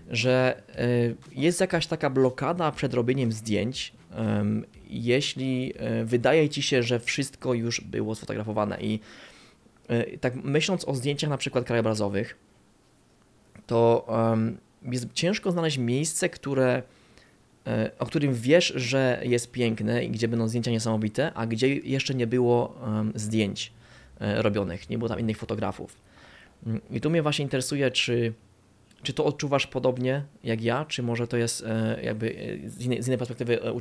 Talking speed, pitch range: 135 wpm, 110-130 Hz